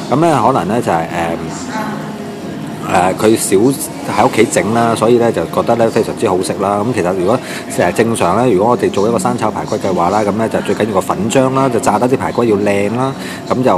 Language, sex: English, male